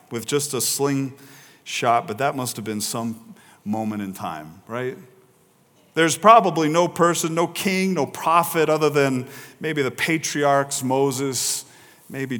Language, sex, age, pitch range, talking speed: English, male, 40-59, 125-185 Hz, 140 wpm